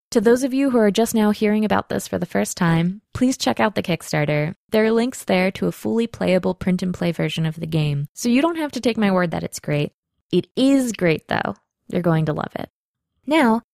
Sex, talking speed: female, 235 wpm